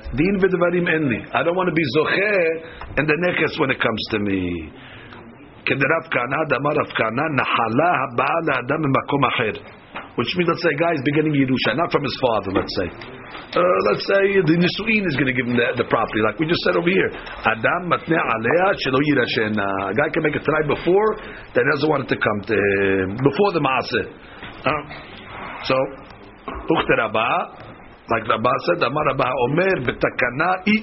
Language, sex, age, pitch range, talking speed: English, male, 50-69, 120-170 Hz, 150 wpm